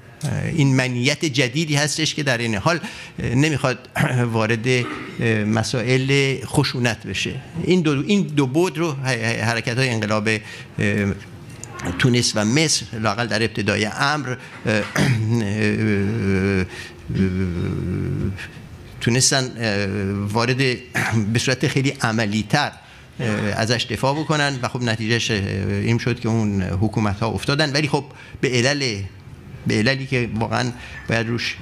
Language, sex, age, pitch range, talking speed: Persian, male, 50-69, 115-145 Hz, 105 wpm